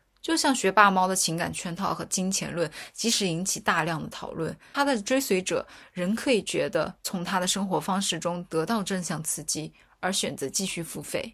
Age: 20-39